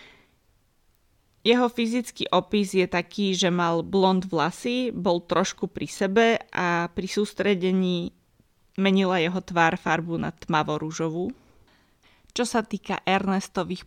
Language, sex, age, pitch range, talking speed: Slovak, female, 20-39, 175-210 Hz, 110 wpm